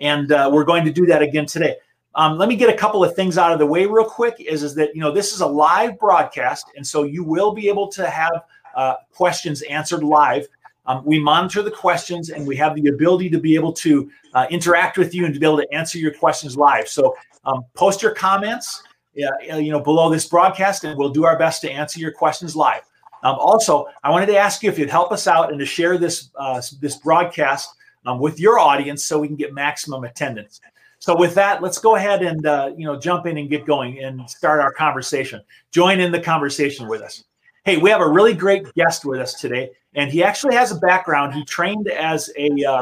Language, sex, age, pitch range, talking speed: English, male, 40-59, 145-180 Hz, 235 wpm